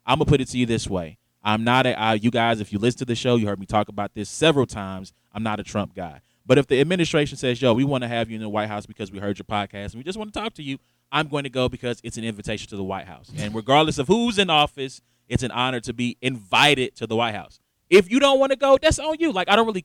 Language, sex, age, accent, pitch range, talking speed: English, male, 20-39, American, 115-155 Hz, 310 wpm